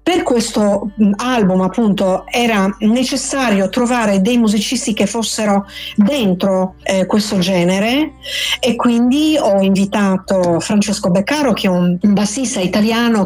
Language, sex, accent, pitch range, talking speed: Italian, female, native, 190-235 Hz, 120 wpm